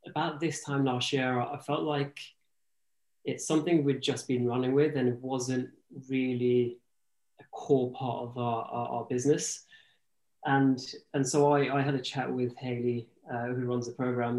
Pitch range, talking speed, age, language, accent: 120-140 Hz, 170 wpm, 20-39, English, British